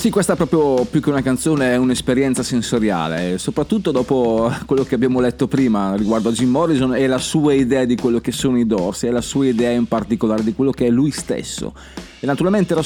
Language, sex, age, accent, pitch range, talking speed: Italian, male, 30-49, native, 130-180 Hz, 220 wpm